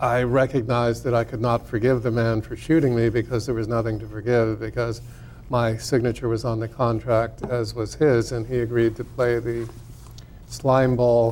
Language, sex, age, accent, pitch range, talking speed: English, male, 50-69, American, 115-125 Hz, 185 wpm